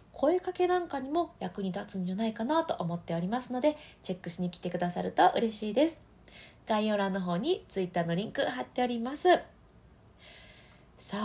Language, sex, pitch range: Japanese, female, 175-240 Hz